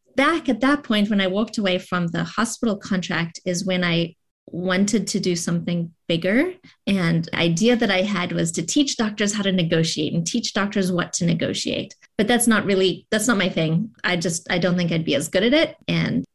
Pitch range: 175-215 Hz